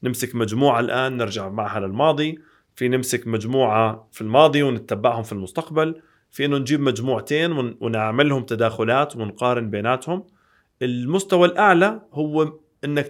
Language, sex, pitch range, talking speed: Arabic, male, 115-155 Hz, 120 wpm